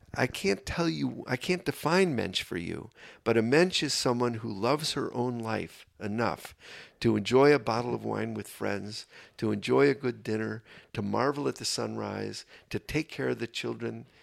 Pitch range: 110-135 Hz